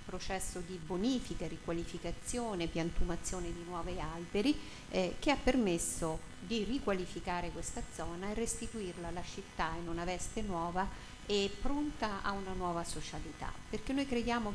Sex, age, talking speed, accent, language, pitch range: female, 50-69, 135 wpm, native, Italian, 170-205 Hz